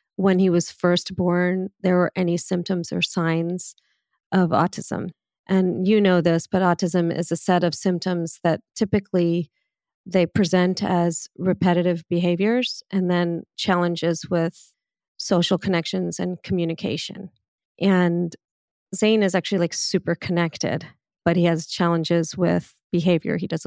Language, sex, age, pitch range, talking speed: English, female, 40-59, 170-195 Hz, 135 wpm